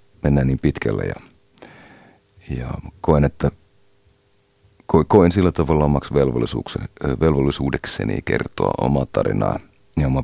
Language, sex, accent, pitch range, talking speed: Finnish, male, native, 70-95 Hz, 100 wpm